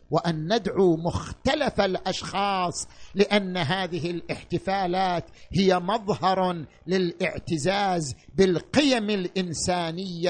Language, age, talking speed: Arabic, 50-69, 70 wpm